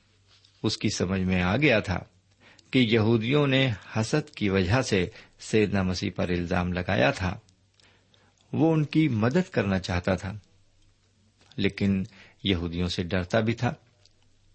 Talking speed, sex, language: 135 wpm, male, Urdu